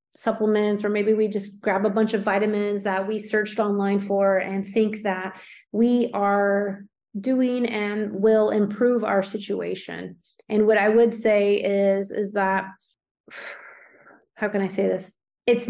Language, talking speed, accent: English, 155 wpm, American